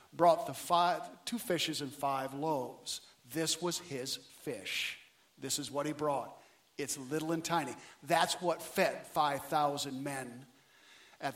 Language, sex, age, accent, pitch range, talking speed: English, male, 50-69, American, 145-185 Hz, 145 wpm